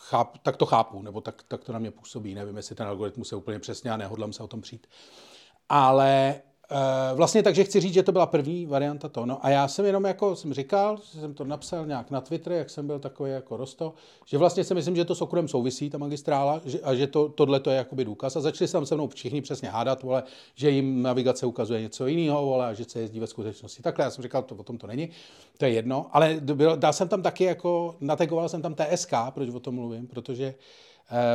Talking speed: 235 wpm